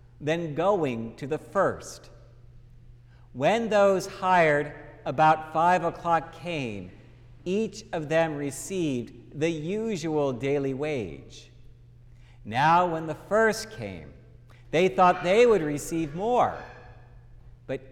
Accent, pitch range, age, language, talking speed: American, 120-180 Hz, 50-69, English, 105 wpm